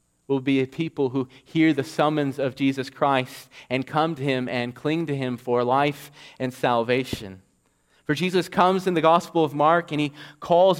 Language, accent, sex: English, American, male